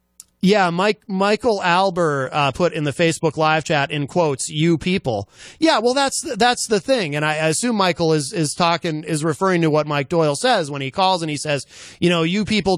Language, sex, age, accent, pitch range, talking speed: English, male, 30-49, American, 150-195 Hz, 220 wpm